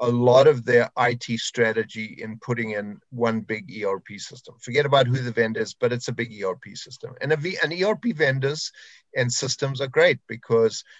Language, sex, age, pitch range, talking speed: English, male, 50-69, 115-135 Hz, 190 wpm